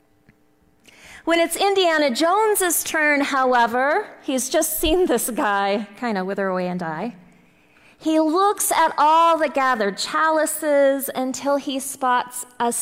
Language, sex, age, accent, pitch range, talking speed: English, female, 30-49, American, 190-315 Hz, 130 wpm